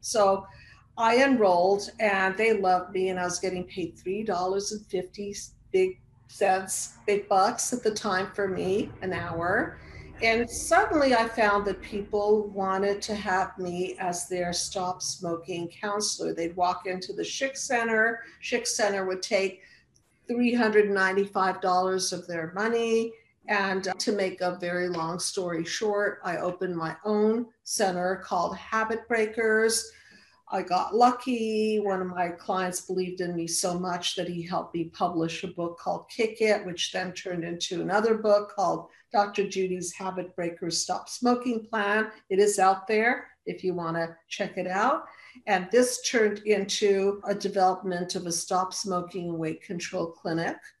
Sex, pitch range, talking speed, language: female, 180-215 Hz, 155 wpm, English